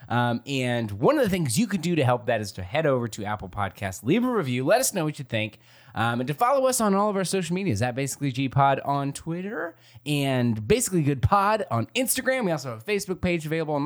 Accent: American